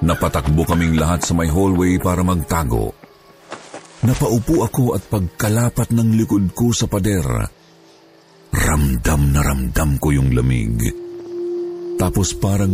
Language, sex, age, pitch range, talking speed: Filipino, male, 50-69, 90-125 Hz, 120 wpm